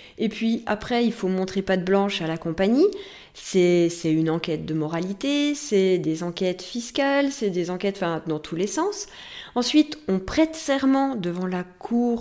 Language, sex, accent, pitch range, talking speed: French, female, French, 175-240 Hz, 180 wpm